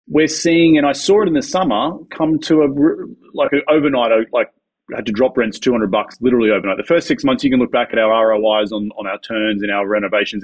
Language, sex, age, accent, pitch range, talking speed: English, male, 30-49, Australian, 115-190 Hz, 245 wpm